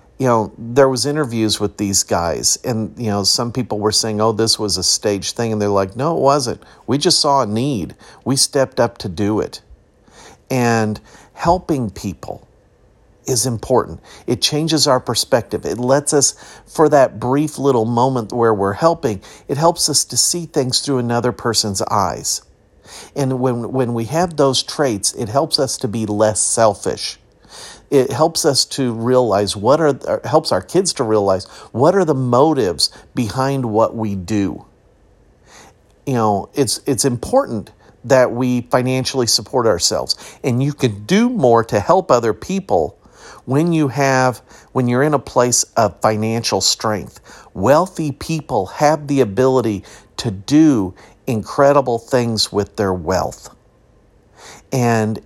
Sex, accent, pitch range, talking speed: male, American, 110-140 Hz, 155 wpm